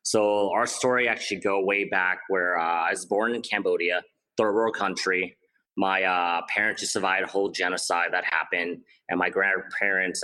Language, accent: English, American